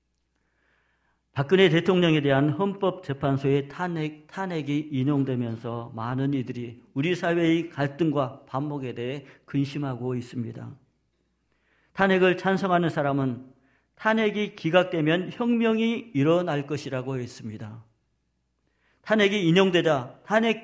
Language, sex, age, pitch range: Korean, male, 50-69, 135-200 Hz